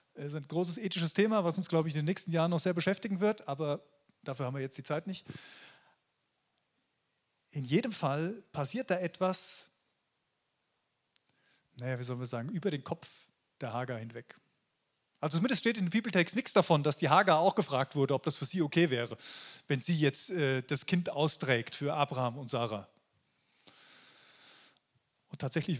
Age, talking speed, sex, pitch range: 30-49, 175 wpm, male, 140-185 Hz